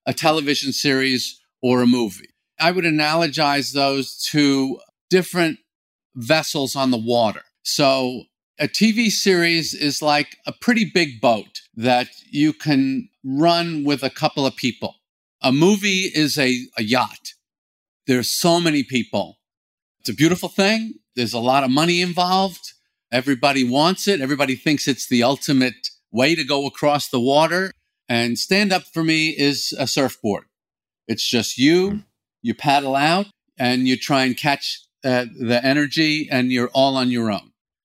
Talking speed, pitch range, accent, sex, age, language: 155 wpm, 125-170 Hz, American, male, 50-69, English